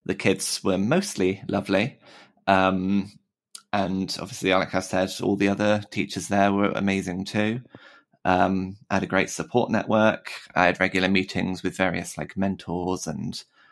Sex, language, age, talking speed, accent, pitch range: male, English, 20-39, 155 wpm, British, 90-100 Hz